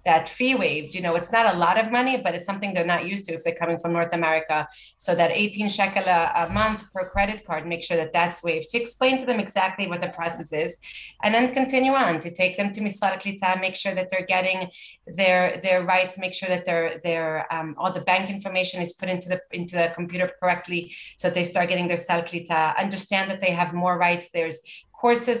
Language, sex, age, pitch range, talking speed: English, female, 30-49, 170-195 Hz, 230 wpm